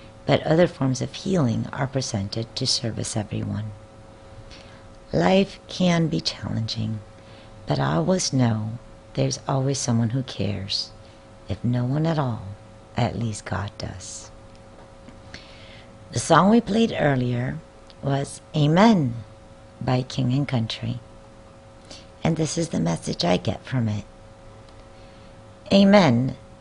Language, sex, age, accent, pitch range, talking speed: English, female, 50-69, American, 110-140 Hz, 120 wpm